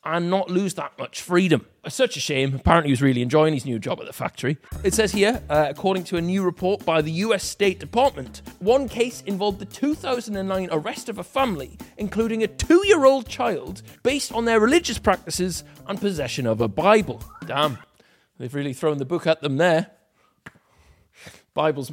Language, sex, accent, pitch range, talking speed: English, male, British, 150-215 Hz, 185 wpm